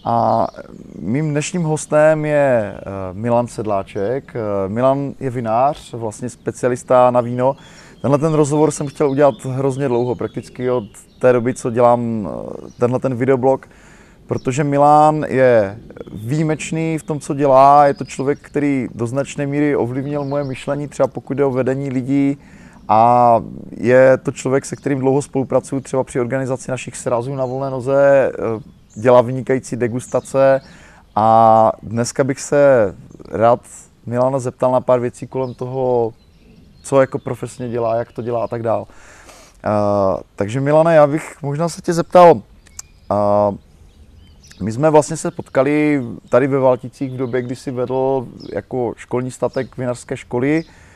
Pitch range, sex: 120-140 Hz, male